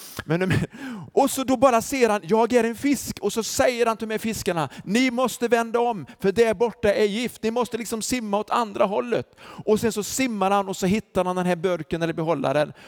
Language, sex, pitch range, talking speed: Swedish, male, 150-225 Hz, 230 wpm